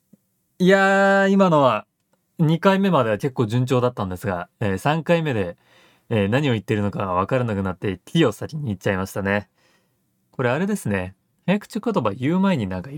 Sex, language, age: male, Japanese, 20-39